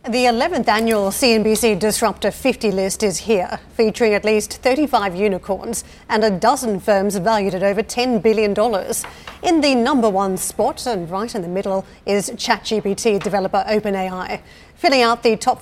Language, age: English, 40-59